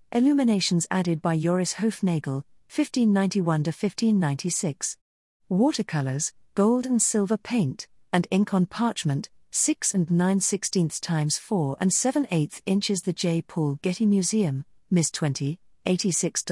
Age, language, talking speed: 40-59, English, 115 wpm